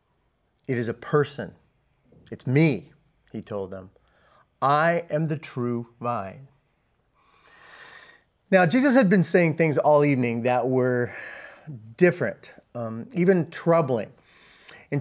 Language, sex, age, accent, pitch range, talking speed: English, male, 30-49, American, 130-170 Hz, 115 wpm